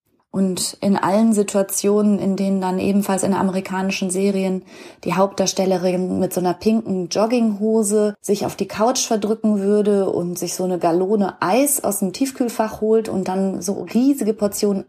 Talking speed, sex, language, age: 155 wpm, female, German, 20-39